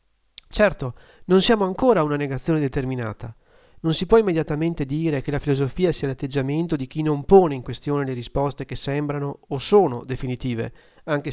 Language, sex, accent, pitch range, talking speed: Italian, male, native, 140-200 Hz, 165 wpm